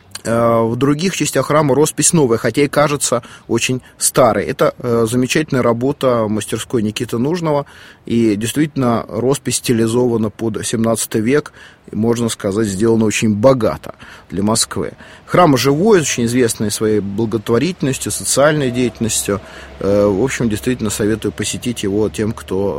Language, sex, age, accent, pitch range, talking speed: Russian, male, 30-49, native, 105-130 Hz, 125 wpm